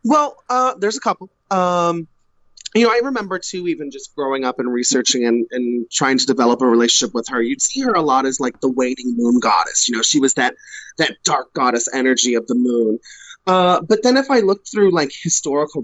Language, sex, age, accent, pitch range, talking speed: English, male, 30-49, American, 135-175 Hz, 220 wpm